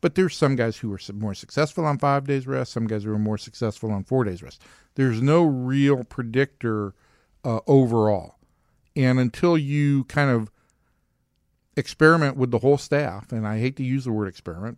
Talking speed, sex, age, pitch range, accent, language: 185 wpm, male, 50-69, 110-145 Hz, American, English